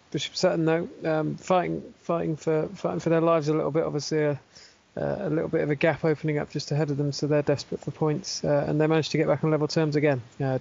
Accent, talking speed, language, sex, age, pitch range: British, 260 wpm, English, male, 20-39, 135-160 Hz